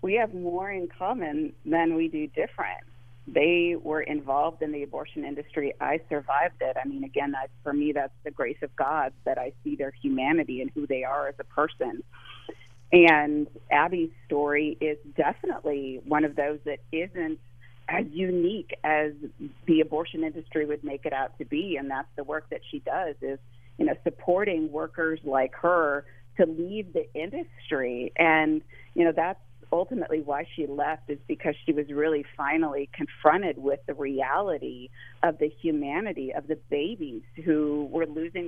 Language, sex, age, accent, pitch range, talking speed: English, female, 30-49, American, 140-165 Hz, 170 wpm